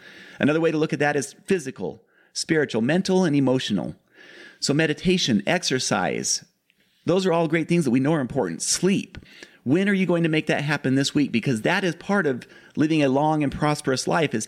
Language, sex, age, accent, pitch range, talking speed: English, male, 40-59, American, 140-190 Hz, 200 wpm